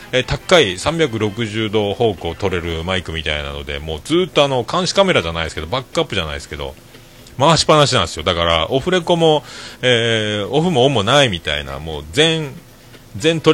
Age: 40-59